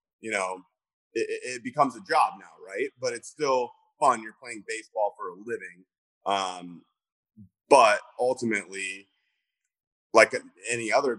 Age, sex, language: 30-49, male, English